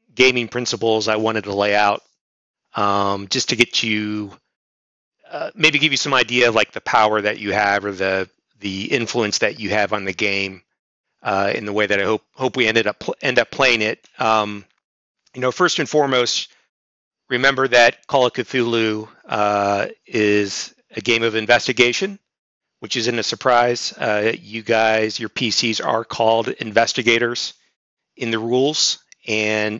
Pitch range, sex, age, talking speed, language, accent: 105-120 Hz, male, 30-49, 170 wpm, English, American